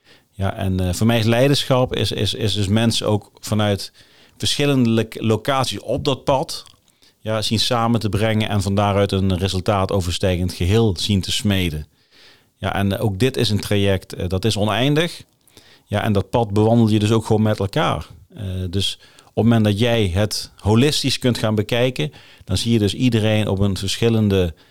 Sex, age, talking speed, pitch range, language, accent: male, 40-59, 185 wpm, 95-115 Hz, Dutch, Dutch